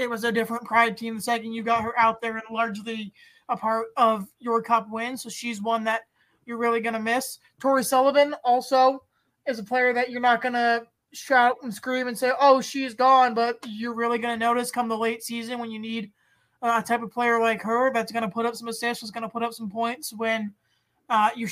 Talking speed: 235 wpm